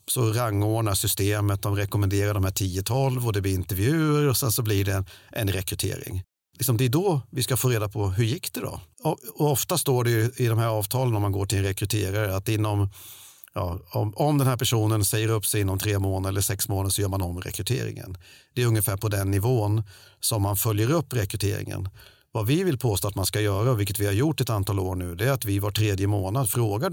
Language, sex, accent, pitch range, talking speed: English, male, Swedish, 100-125 Hz, 230 wpm